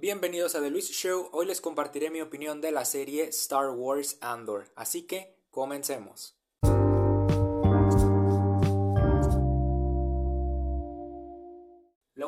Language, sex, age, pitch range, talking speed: Spanish, male, 20-39, 130-180 Hz, 100 wpm